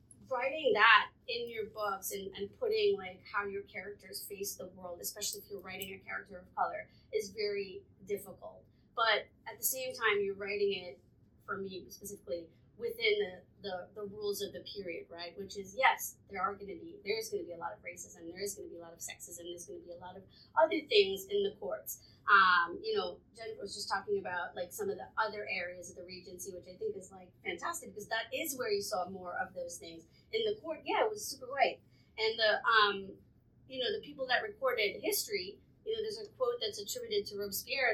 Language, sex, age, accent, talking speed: English, female, 30-49, American, 225 wpm